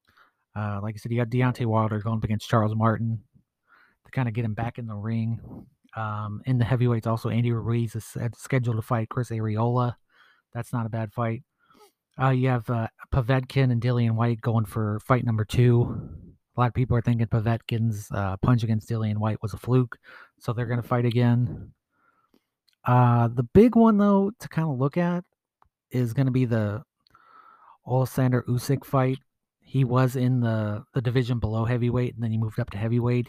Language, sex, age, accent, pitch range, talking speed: English, male, 30-49, American, 115-130 Hz, 195 wpm